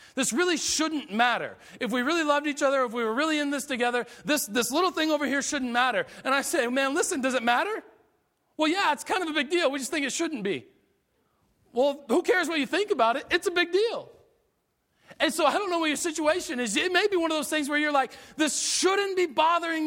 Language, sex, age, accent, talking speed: English, male, 40-59, American, 250 wpm